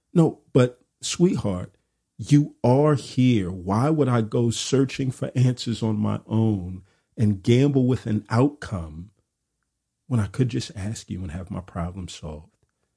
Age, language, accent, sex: 40-59, English, American, male